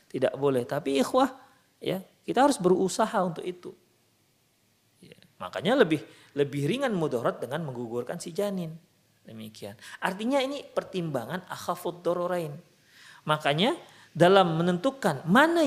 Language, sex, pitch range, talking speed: Indonesian, male, 145-230 Hz, 115 wpm